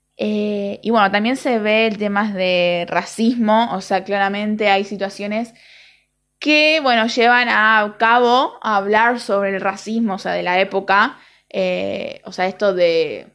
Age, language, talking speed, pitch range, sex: 20-39, Spanish, 155 wpm, 190-230 Hz, female